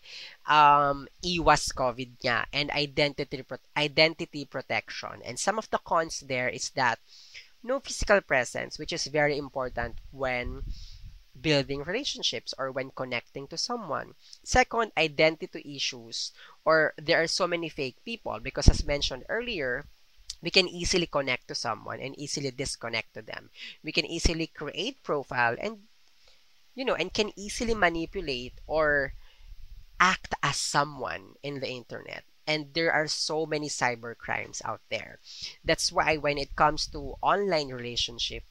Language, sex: Filipino, female